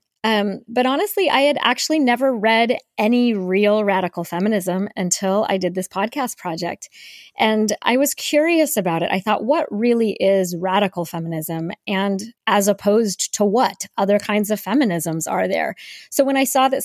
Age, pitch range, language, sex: 20-39, 180-225 Hz, English, female